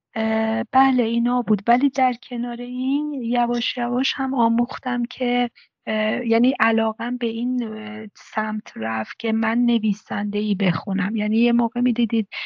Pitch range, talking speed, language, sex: 215-240 Hz, 130 wpm, Persian, female